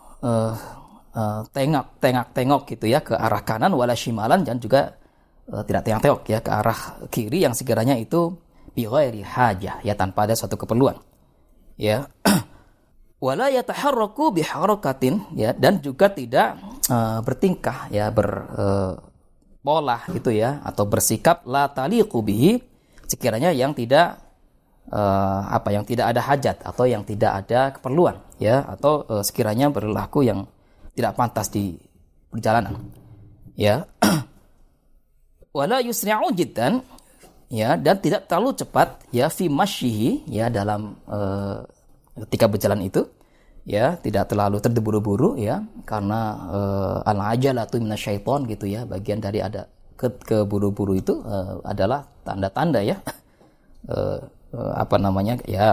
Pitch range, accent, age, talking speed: 100-135 Hz, native, 20-39, 130 wpm